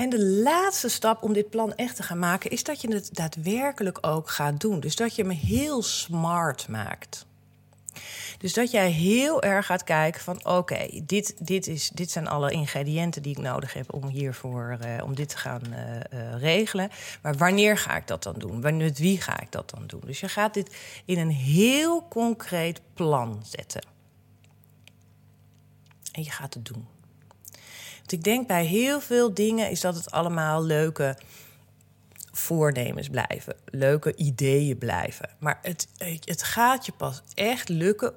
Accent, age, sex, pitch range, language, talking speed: Dutch, 40-59, female, 145-195 Hz, Dutch, 175 wpm